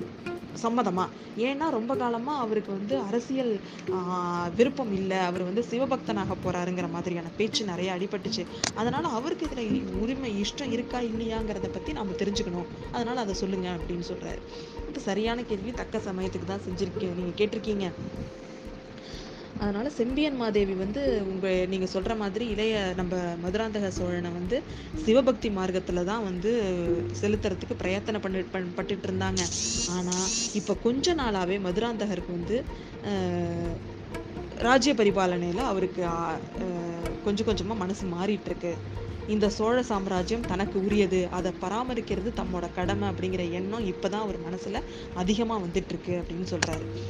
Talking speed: 120 wpm